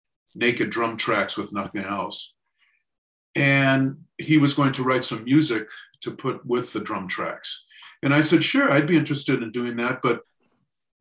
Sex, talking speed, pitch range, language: male, 170 wpm, 125-155 Hz, English